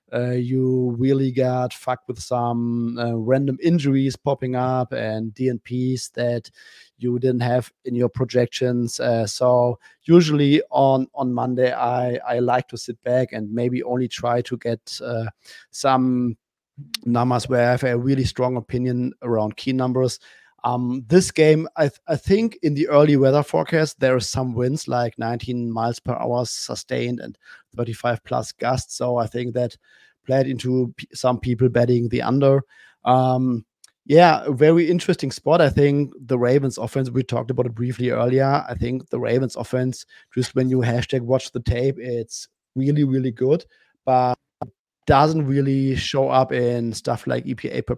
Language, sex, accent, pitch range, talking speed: English, male, German, 120-135 Hz, 160 wpm